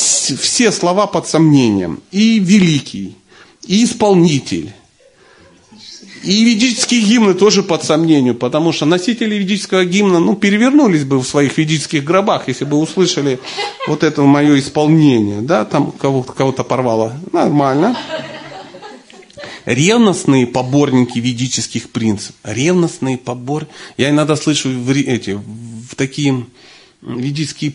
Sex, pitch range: male, 125-180 Hz